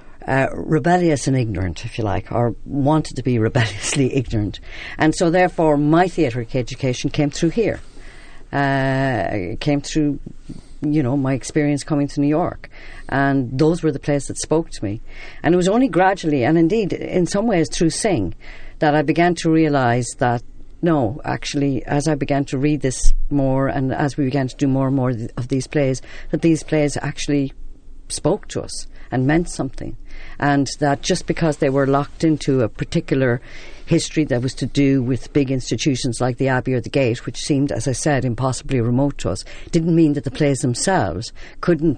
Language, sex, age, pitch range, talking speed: English, female, 50-69, 125-155 Hz, 190 wpm